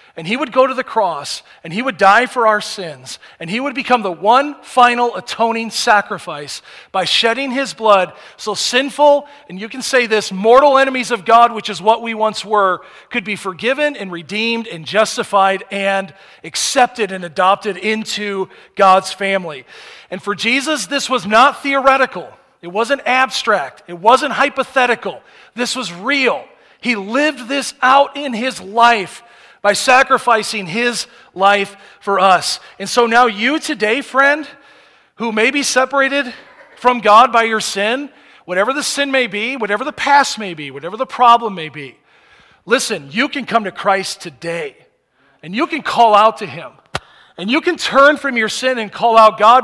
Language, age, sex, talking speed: English, 40-59, male, 170 wpm